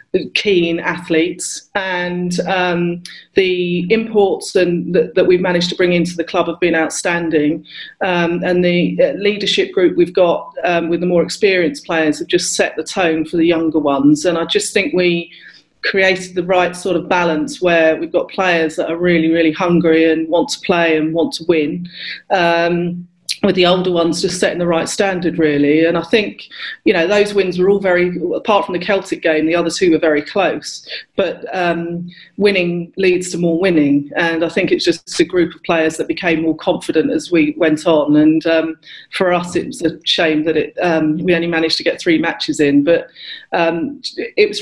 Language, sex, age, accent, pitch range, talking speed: English, female, 40-59, British, 165-185 Hz, 200 wpm